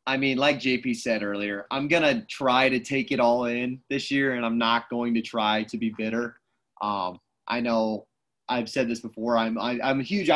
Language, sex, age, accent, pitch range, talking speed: English, male, 30-49, American, 115-135 Hz, 220 wpm